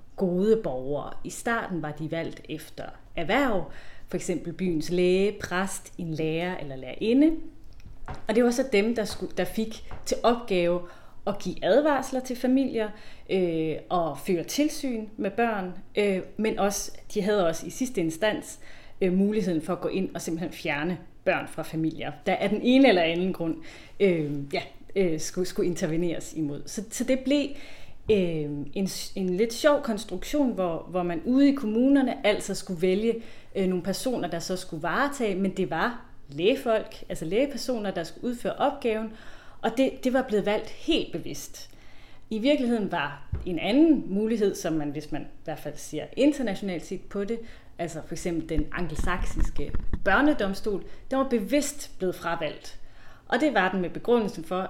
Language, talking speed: Danish, 165 wpm